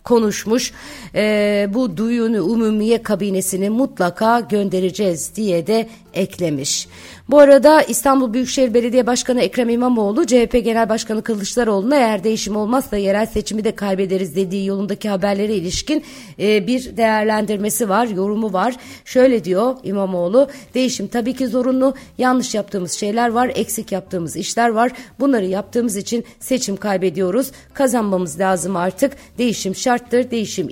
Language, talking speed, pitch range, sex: Turkish, 130 wpm, 190-245 Hz, female